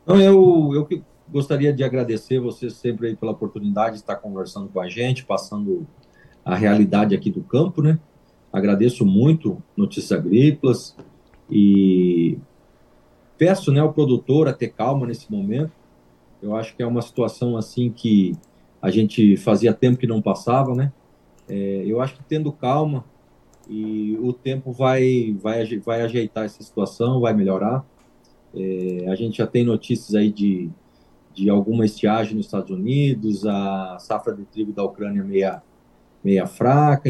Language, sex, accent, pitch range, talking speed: Portuguese, male, Brazilian, 100-130 Hz, 155 wpm